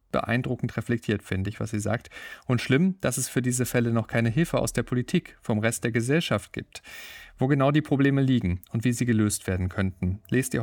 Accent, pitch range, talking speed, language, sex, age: German, 110-130 Hz, 215 wpm, German, male, 40-59